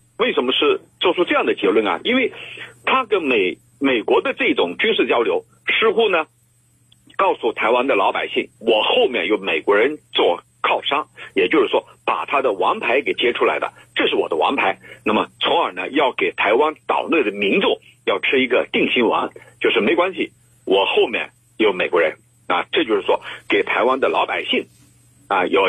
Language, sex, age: Chinese, male, 50-69